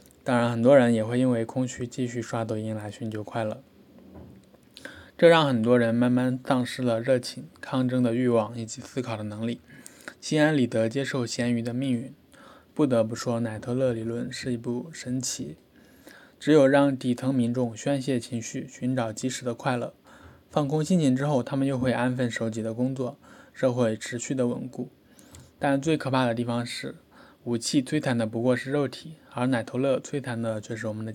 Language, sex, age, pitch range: Chinese, male, 20-39, 120-135 Hz